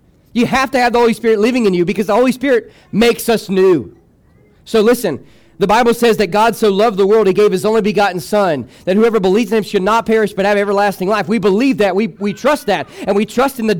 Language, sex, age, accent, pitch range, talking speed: English, male, 40-59, American, 200-245 Hz, 250 wpm